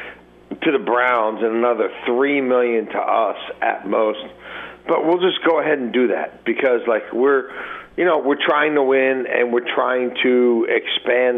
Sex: male